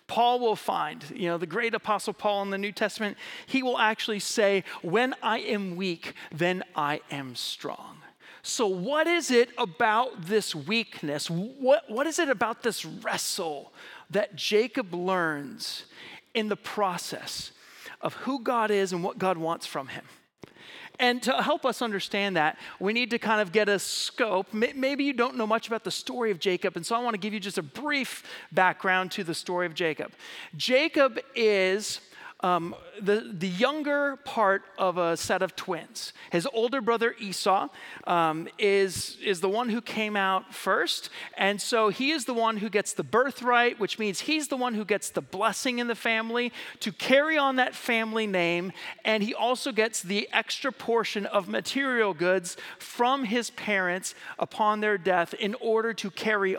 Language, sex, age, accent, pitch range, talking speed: English, male, 40-59, American, 185-240 Hz, 180 wpm